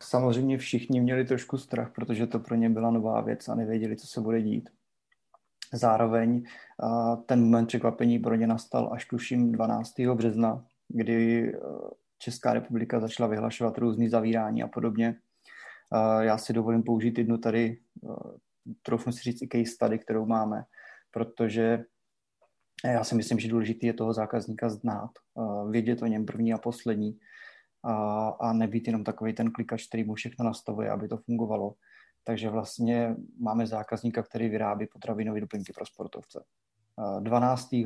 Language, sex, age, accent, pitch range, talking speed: Czech, male, 20-39, native, 110-120 Hz, 145 wpm